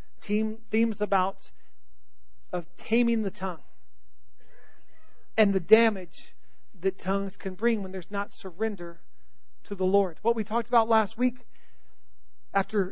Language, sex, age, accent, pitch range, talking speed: English, male, 40-59, American, 170-220 Hz, 125 wpm